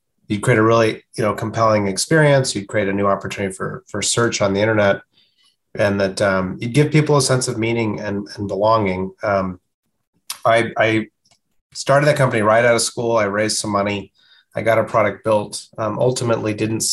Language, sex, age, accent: English, male, 30-49, American